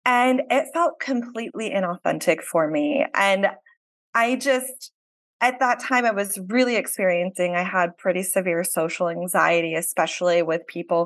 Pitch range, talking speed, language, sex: 175-240 Hz, 140 wpm, English, female